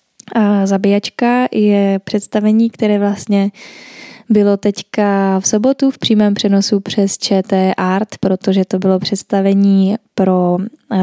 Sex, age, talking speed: female, 10-29, 115 wpm